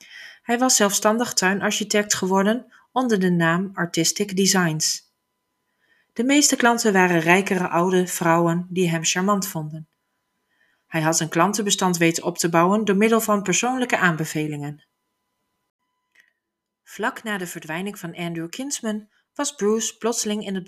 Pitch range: 170-215 Hz